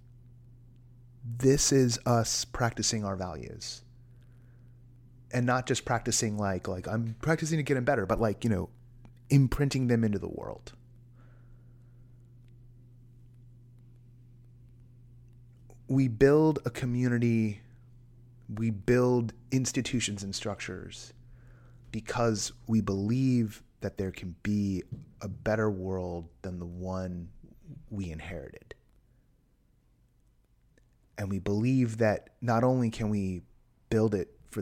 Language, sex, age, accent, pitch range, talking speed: English, male, 30-49, American, 100-125 Hz, 105 wpm